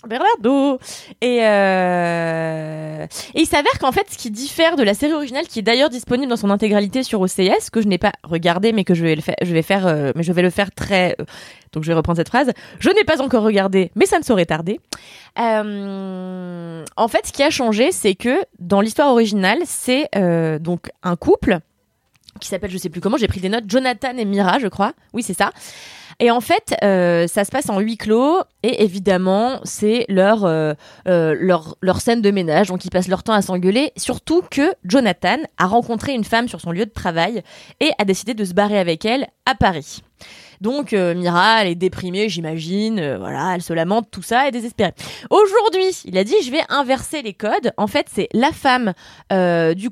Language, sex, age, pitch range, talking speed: French, female, 20-39, 185-250 Hz, 215 wpm